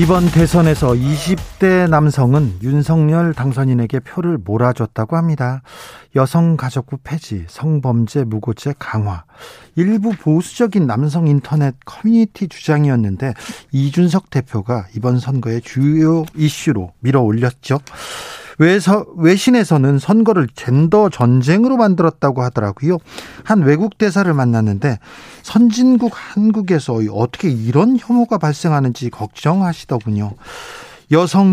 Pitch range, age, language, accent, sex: 125-175 Hz, 40-59, Korean, native, male